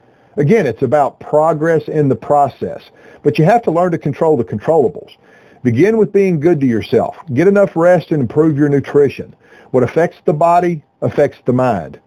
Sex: male